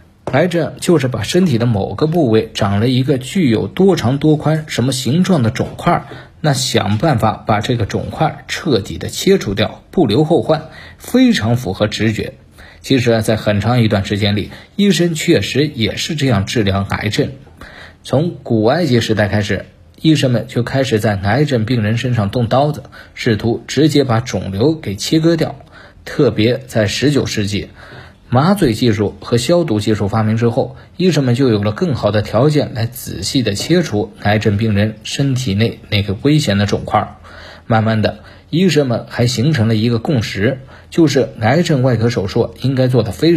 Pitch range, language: 105-145 Hz, Chinese